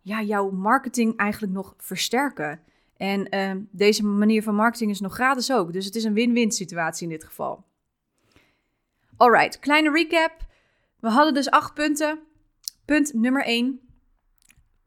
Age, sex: 20-39, female